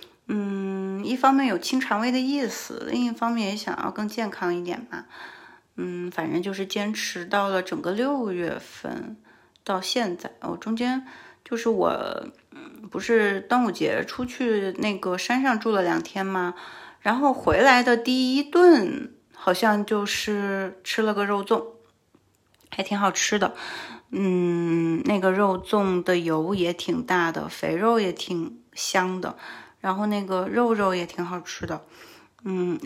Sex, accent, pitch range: female, native, 185-240 Hz